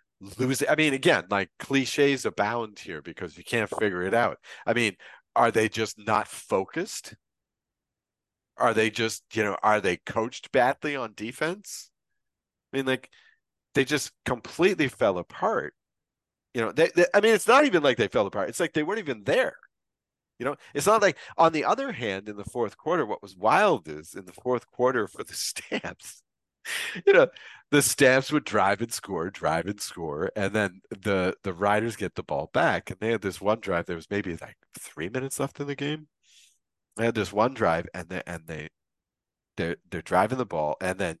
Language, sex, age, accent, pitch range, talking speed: English, male, 40-59, American, 100-140 Hz, 195 wpm